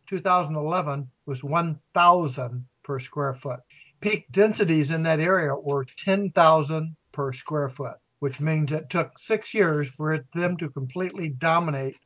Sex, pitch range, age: male, 145-175 Hz, 60-79